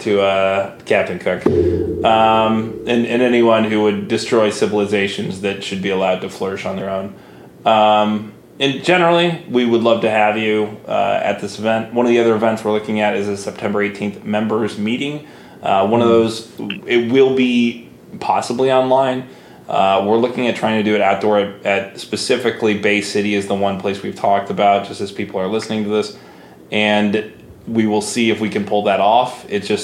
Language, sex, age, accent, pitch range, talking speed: English, male, 20-39, American, 100-115 Hz, 195 wpm